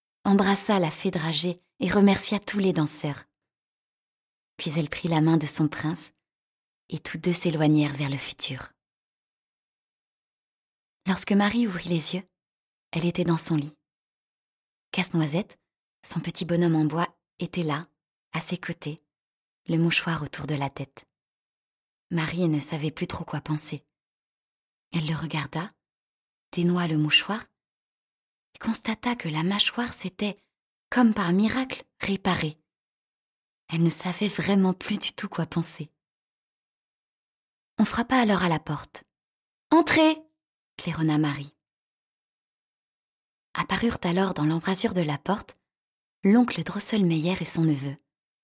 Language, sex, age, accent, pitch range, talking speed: French, female, 20-39, French, 155-200 Hz, 130 wpm